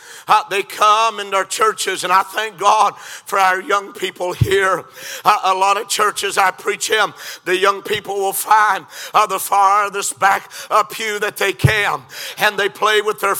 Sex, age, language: male, 50-69, English